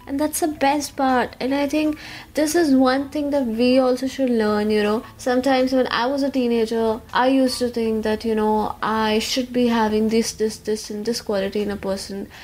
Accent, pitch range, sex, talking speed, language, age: native, 225-280 Hz, female, 215 wpm, Hindi, 20-39